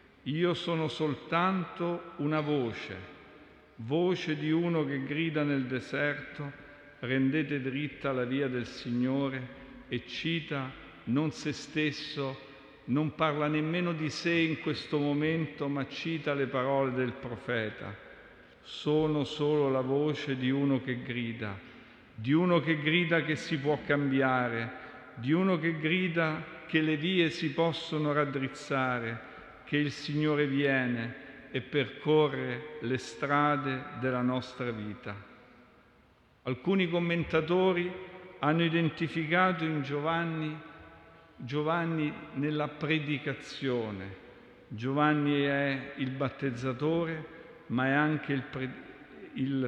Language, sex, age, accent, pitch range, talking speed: Italian, male, 50-69, native, 130-160 Hz, 110 wpm